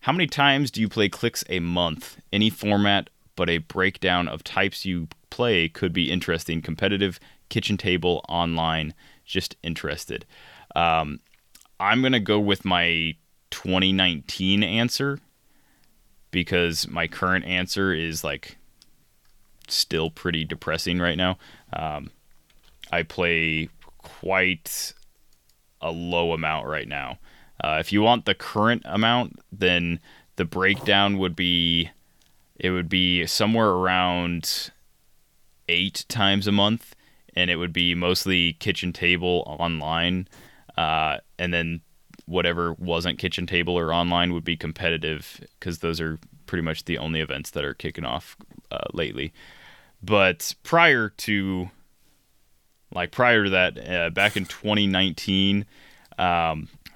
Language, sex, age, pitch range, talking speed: English, male, 20-39, 85-95 Hz, 130 wpm